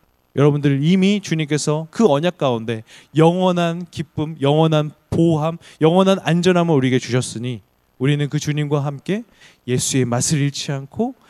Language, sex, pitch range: Korean, male, 140-190 Hz